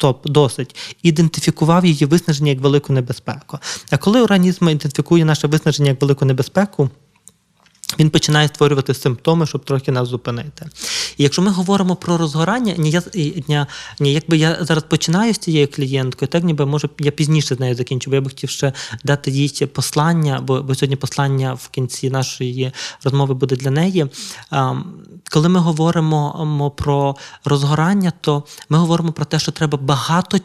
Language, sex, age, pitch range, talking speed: Ukrainian, male, 20-39, 135-160 Hz, 160 wpm